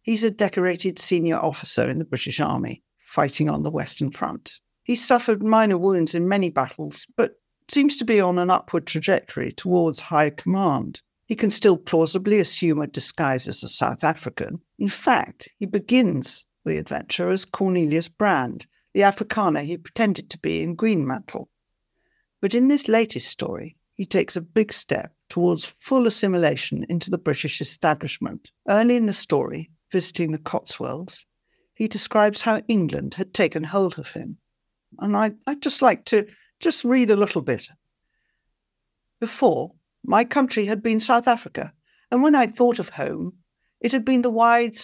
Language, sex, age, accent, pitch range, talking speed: English, female, 60-79, British, 165-225 Hz, 160 wpm